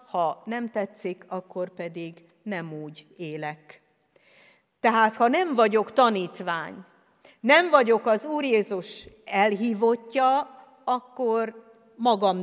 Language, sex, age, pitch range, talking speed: Hungarian, female, 50-69, 185-235 Hz, 100 wpm